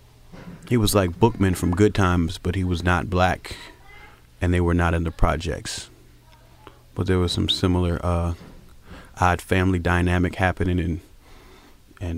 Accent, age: American, 30-49